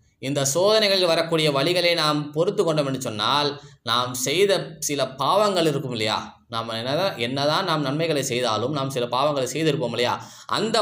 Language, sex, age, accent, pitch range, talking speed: Tamil, male, 20-39, native, 125-165 Hz, 140 wpm